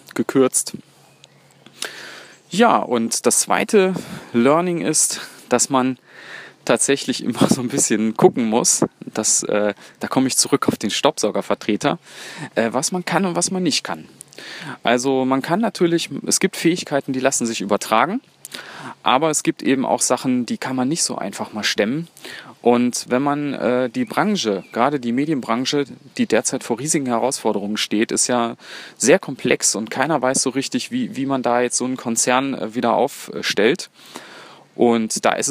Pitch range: 120-155 Hz